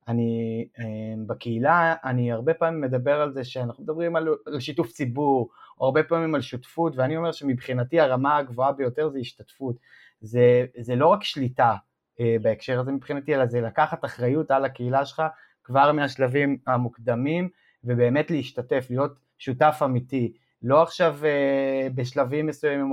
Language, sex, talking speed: Hebrew, male, 145 wpm